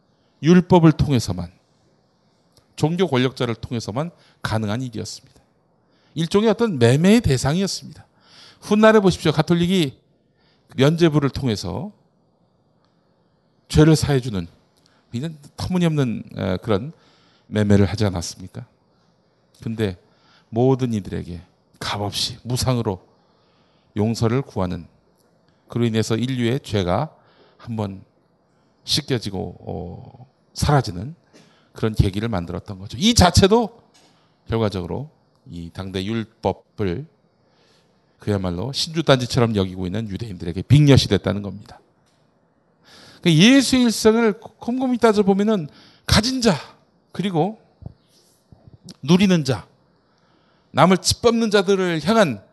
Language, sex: Korean, male